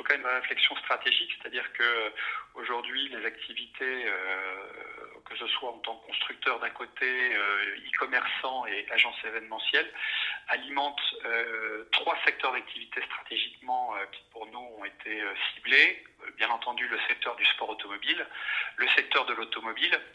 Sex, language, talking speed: male, French, 150 wpm